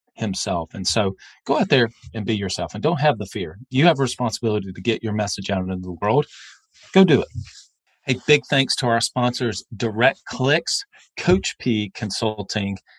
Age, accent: 40-59, American